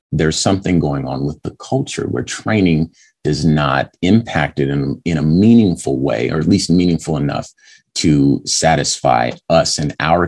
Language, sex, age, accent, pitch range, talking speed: English, male, 30-49, American, 70-90 Hz, 160 wpm